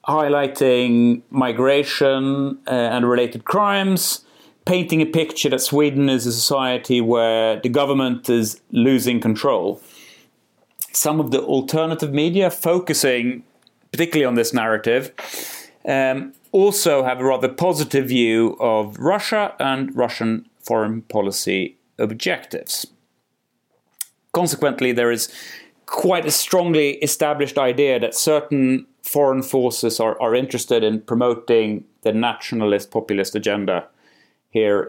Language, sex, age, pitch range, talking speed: Swedish, male, 30-49, 120-150 Hz, 110 wpm